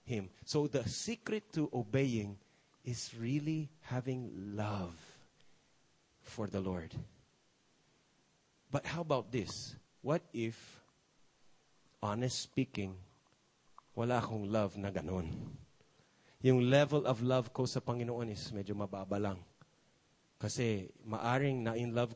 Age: 30-49